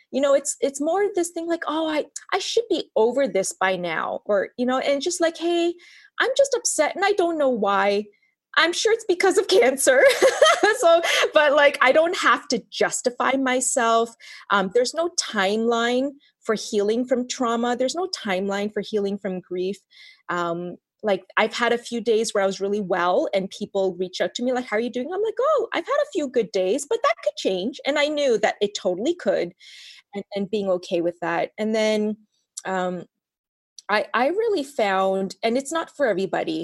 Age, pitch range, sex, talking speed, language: 20-39, 190-290 Hz, female, 200 wpm, English